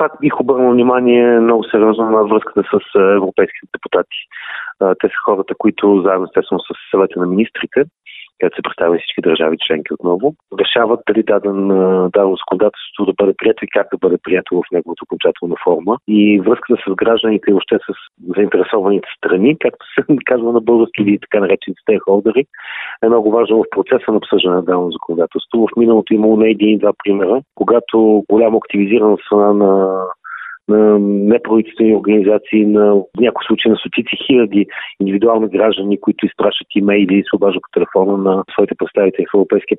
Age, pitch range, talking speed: 40-59, 95-110 Hz, 160 wpm